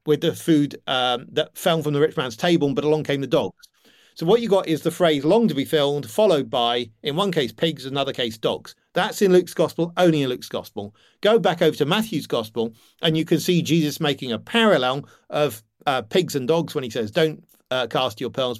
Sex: male